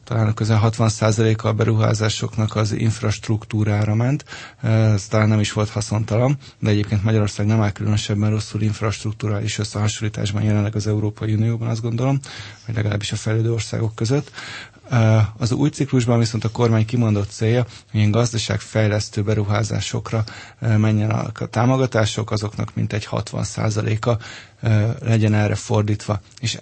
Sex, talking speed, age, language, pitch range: male, 130 wpm, 20-39, Hungarian, 105-115 Hz